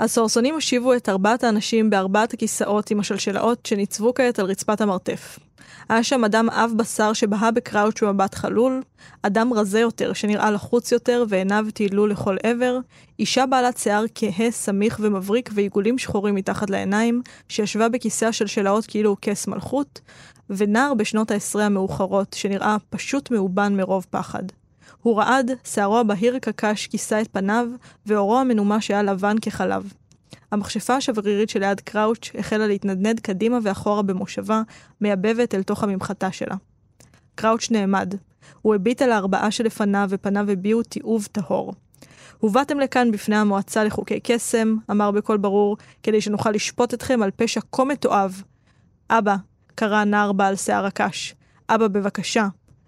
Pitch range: 205-230 Hz